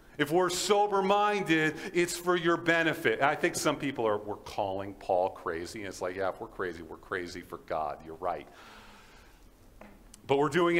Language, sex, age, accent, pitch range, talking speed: English, male, 50-69, American, 105-135 Hz, 185 wpm